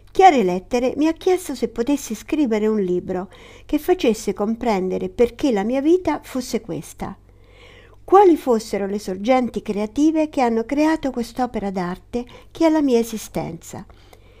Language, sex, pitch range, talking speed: Italian, female, 185-255 Hz, 140 wpm